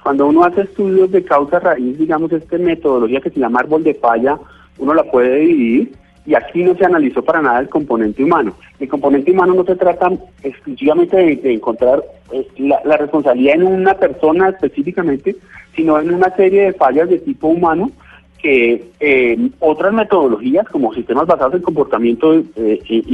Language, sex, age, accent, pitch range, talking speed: Spanish, male, 30-49, Colombian, 135-180 Hz, 175 wpm